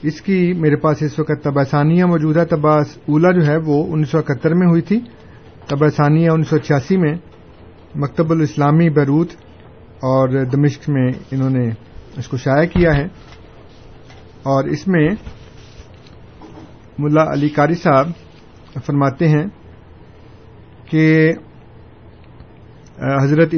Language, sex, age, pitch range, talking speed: Urdu, male, 50-69, 135-165 Hz, 120 wpm